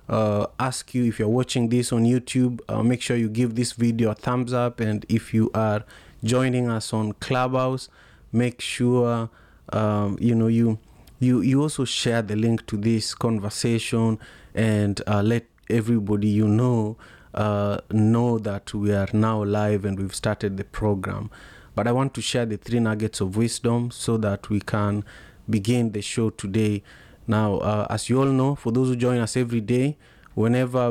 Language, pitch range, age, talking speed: English, 105-120 Hz, 30-49, 180 wpm